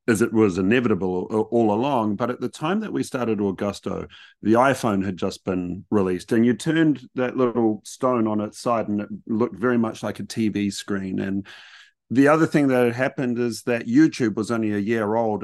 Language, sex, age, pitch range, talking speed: English, male, 40-59, 100-125 Hz, 205 wpm